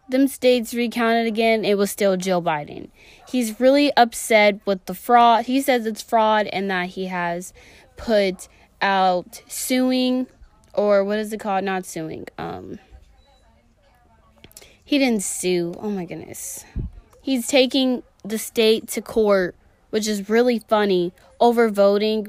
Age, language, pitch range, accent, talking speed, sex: 20-39, English, 190-245 Hz, American, 140 wpm, female